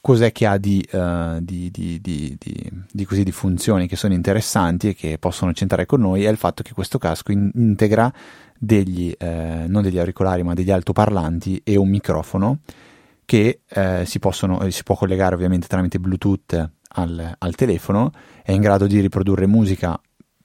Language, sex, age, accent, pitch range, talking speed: Italian, male, 30-49, native, 90-105 Hz, 180 wpm